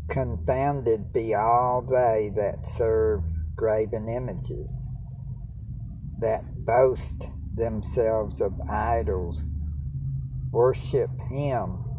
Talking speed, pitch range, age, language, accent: 75 wpm, 85-125 Hz, 60-79, English, American